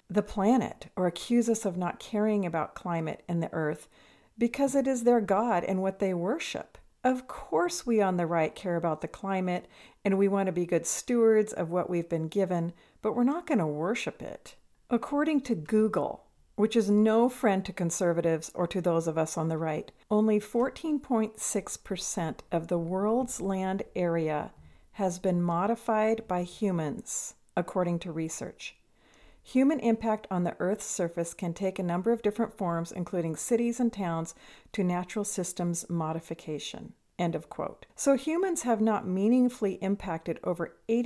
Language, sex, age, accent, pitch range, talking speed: English, female, 50-69, American, 170-225 Hz, 165 wpm